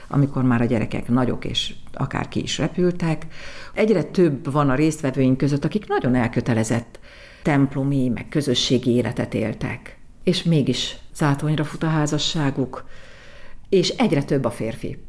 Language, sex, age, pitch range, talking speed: Hungarian, female, 50-69, 130-175 Hz, 140 wpm